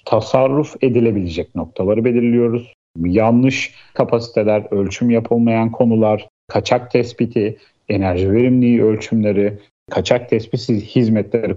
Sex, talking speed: male, 90 wpm